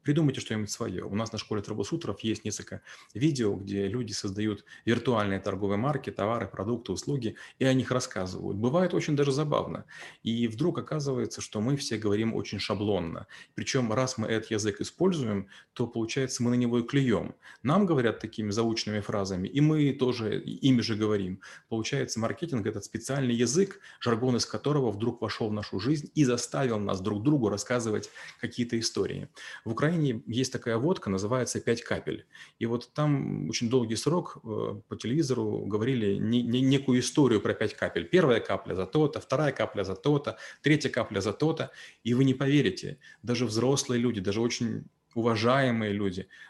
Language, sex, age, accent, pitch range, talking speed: Russian, male, 30-49, native, 105-130 Hz, 165 wpm